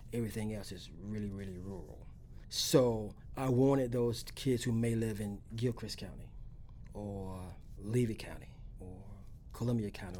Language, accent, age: English, American, 40-59